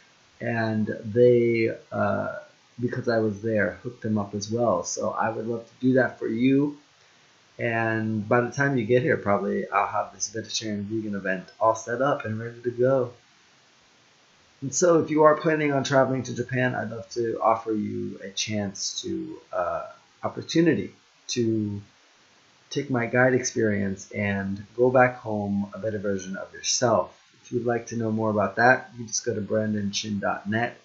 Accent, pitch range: American, 110-135 Hz